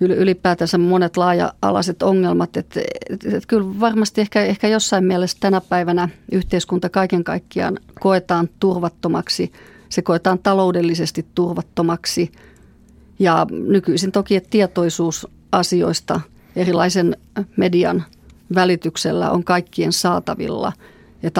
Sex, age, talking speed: female, 30-49, 105 wpm